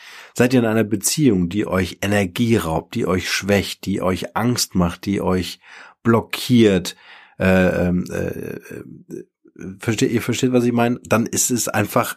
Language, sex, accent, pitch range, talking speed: German, male, German, 100-125 Hz, 160 wpm